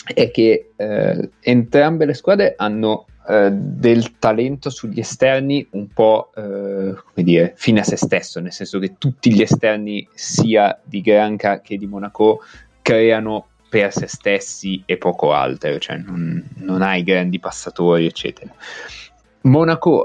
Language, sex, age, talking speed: Italian, male, 30-49, 145 wpm